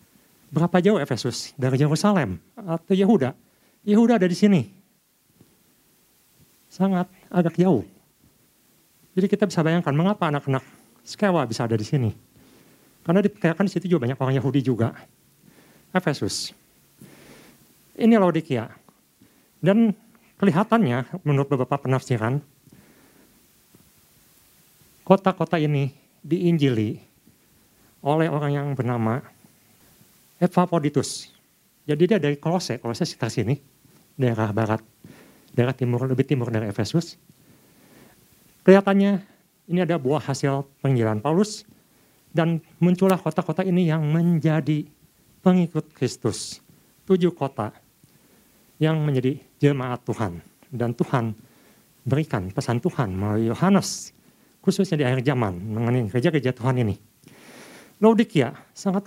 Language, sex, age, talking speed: Indonesian, male, 50-69, 105 wpm